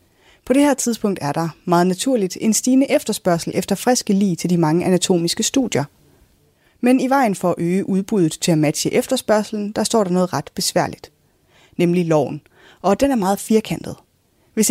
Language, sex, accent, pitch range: Danish, female, native, 170-235 Hz